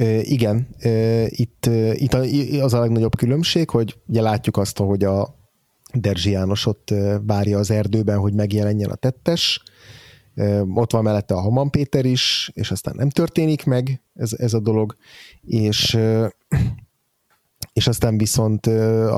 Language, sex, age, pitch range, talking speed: Hungarian, male, 30-49, 105-125 Hz, 155 wpm